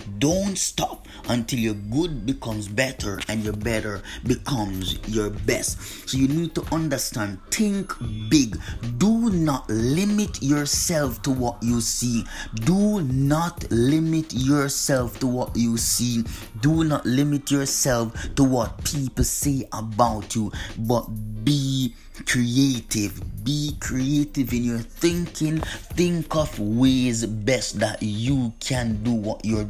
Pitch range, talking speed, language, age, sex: 110-140 Hz, 130 wpm, English, 30-49, male